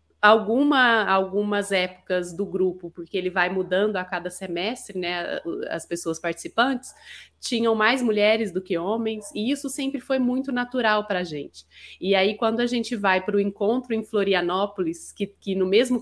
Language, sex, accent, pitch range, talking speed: Portuguese, female, Brazilian, 180-230 Hz, 170 wpm